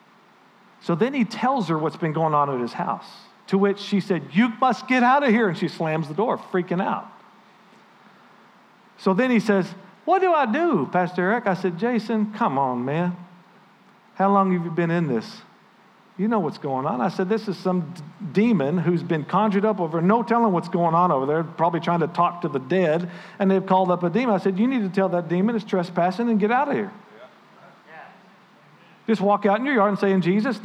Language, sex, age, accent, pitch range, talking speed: English, male, 50-69, American, 165-205 Hz, 220 wpm